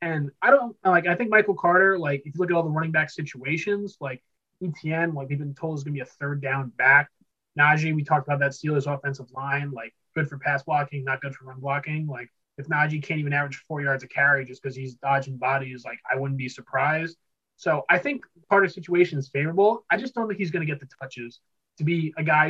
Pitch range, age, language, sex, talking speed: 140-170 Hz, 20-39, English, male, 245 wpm